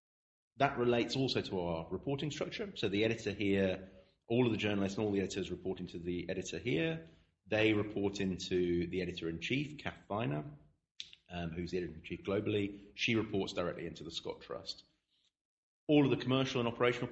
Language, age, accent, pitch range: English, 30-49, British, 85-105 Hz